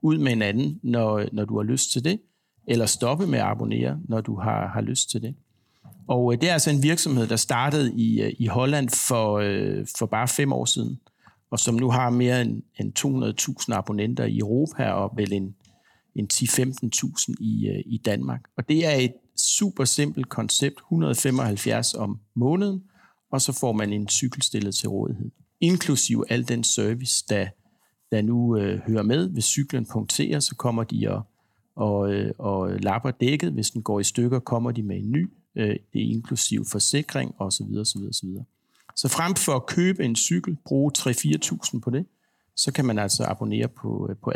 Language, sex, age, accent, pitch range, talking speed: Danish, male, 60-79, native, 105-135 Hz, 185 wpm